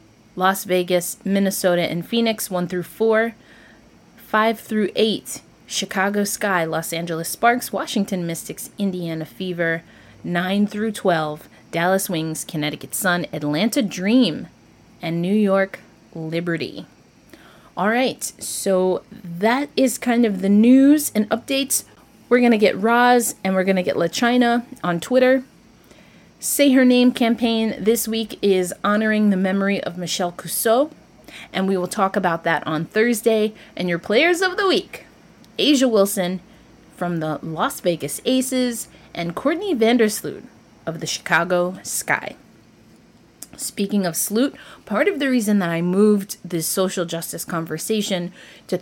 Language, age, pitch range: English, 30-49, 170-230 Hz